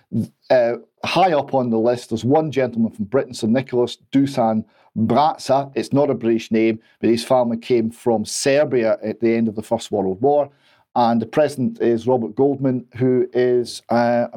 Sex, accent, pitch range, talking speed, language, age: male, British, 120-145 Hz, 180 wpm, English, 40-59